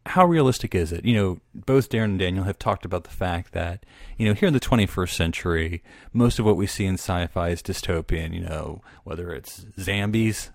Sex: male